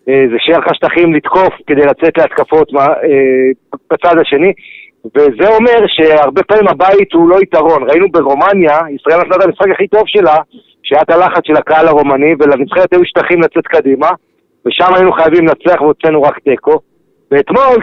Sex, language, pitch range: male, Hebrew, 150-195 Hz